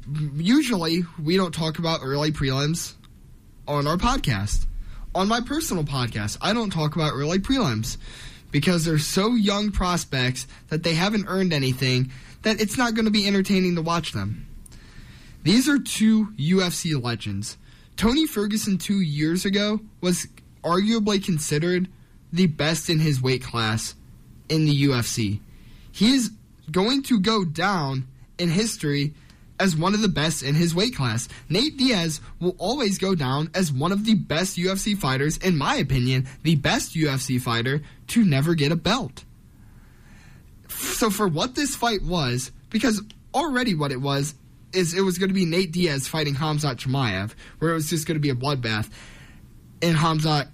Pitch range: 135-190 Hz